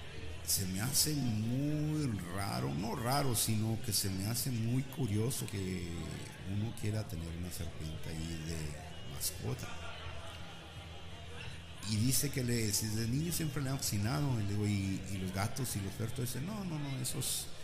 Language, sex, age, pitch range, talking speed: Spanish, male, 50-69, 85-115 Hz, 165 wpm